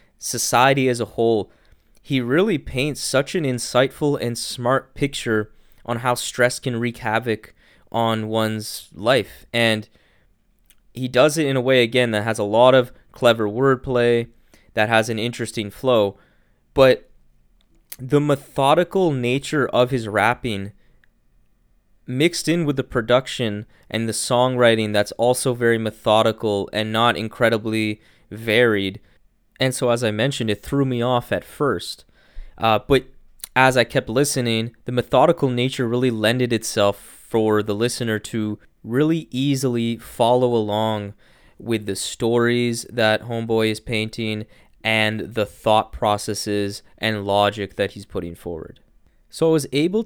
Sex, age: male, 20-39